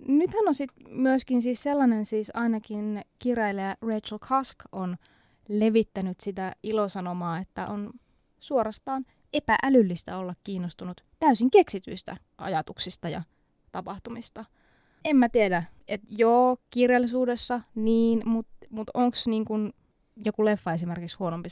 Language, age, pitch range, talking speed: Finnish, 20-39, 195-245 Hz, 115 wpm